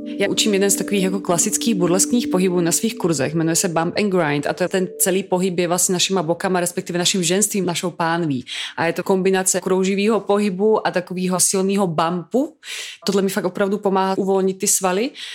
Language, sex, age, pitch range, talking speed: Czech, female, 30-49, 175-200 Hz, 195 wpm